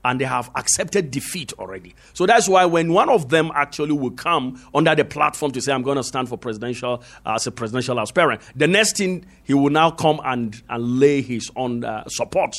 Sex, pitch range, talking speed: male, 135-215 Hz, 220 wpm